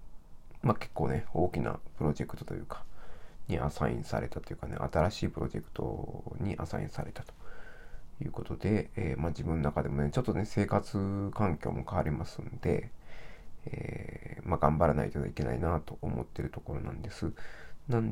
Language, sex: Japanese, male